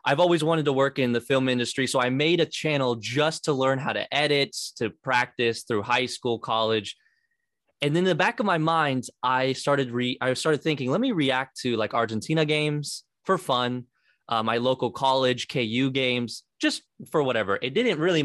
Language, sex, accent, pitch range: English, male, American, 120-155 Hz